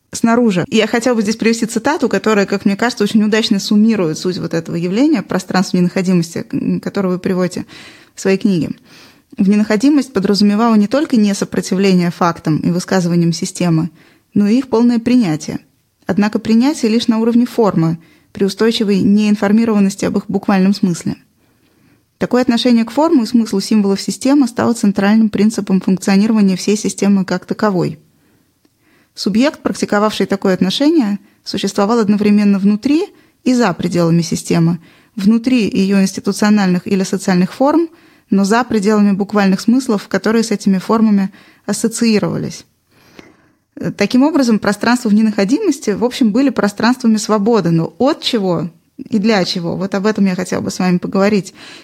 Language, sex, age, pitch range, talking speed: Russian, female, 20-39, 195-230 Hz, 140 wpm